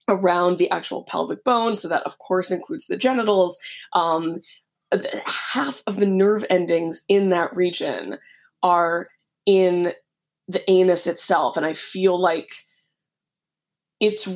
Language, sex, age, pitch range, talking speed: English, female, 20-39, 170-205 Hz, 130 wpm